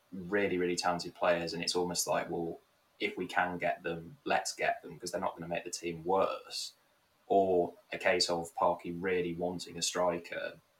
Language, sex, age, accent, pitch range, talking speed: English, male, 20-39, British, 85-90 Hz, 195 wpm